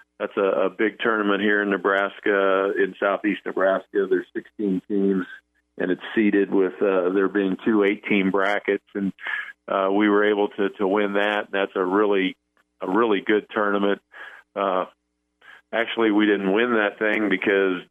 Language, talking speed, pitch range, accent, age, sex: English, 160 wpm, 95-105 Hz, American, 50-69, male